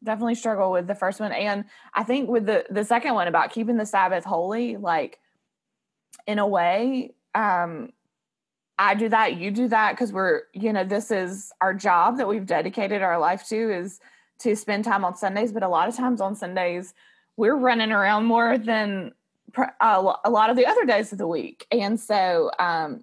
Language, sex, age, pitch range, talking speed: English, female, 20-39, 185-230 Hz, 195 wpm